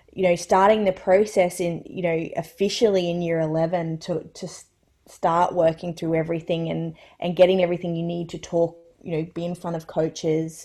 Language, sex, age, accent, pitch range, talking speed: English, female, 20-39, Australian, 160-185 Hz, 185 wpm